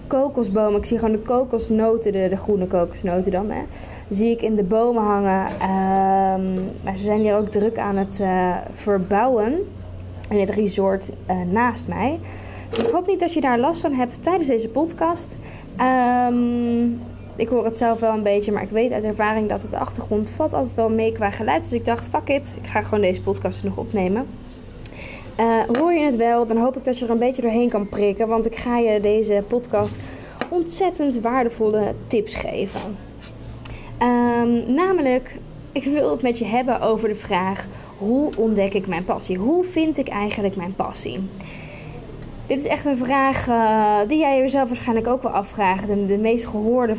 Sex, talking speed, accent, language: female, 185 wpm, Dutch, Dutch